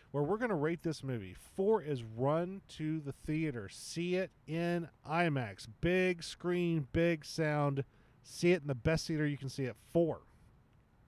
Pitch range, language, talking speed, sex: 130-175 Hz, English, 175 wpm, male